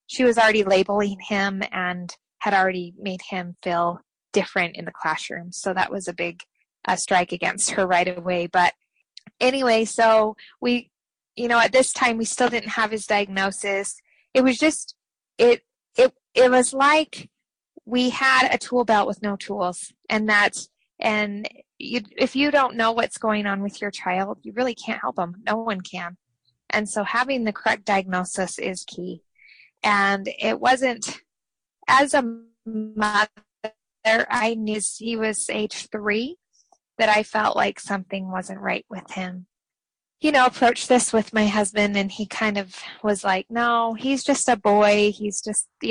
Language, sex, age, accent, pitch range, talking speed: English, female, 20-39, American, 195-235 Hz, 165 wpm